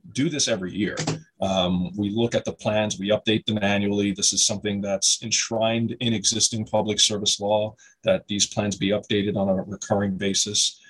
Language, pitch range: English, 95-110 Hz